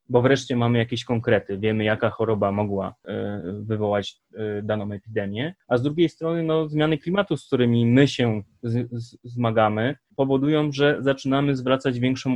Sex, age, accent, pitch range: male, 20-39, native, 115-140 Hz